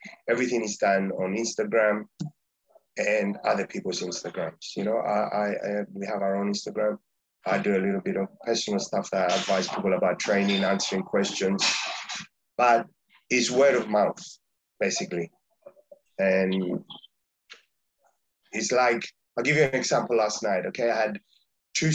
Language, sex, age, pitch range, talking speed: English, male, 30-49, 100-115 Hz, 150 wpm